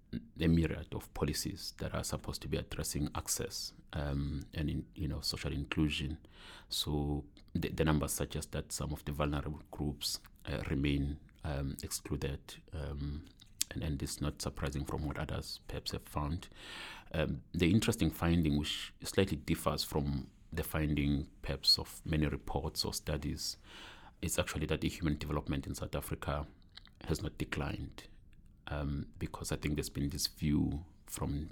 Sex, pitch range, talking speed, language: male, 75-85 Hz, 155 wpm, English